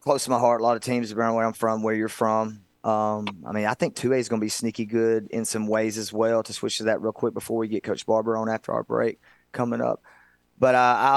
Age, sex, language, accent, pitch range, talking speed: 30-49, male, English, American, 100-130 Hz, 280 wpm